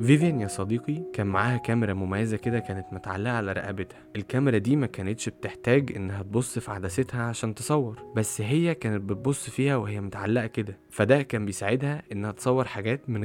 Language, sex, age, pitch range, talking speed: Arabic, male, 20-39, 105-135 Hz, 170 wpm